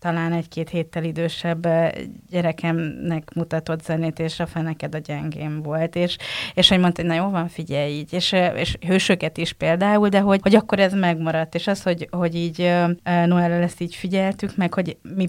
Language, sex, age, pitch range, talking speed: Hungarian, female, 30-49, 165-185 Hz, 185 wpm